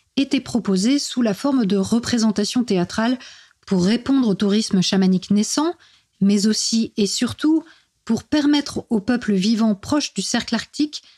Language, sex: French, female